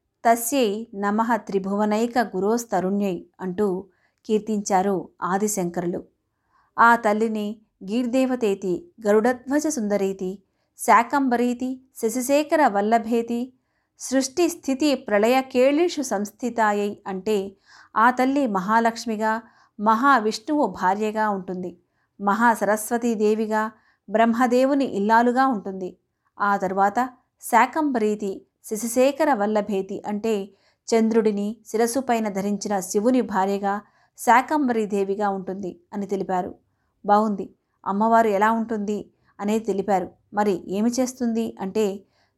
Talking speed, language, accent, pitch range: 80 wpm, Telugu, native, 200-235 Hz